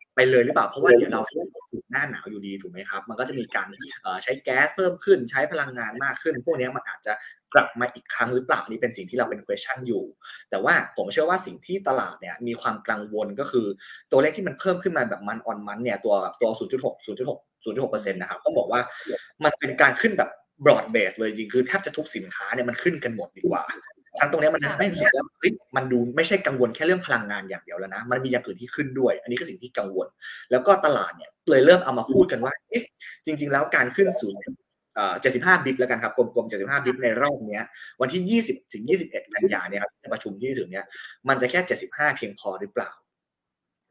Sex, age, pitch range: male, 20-39, 120-185 Hz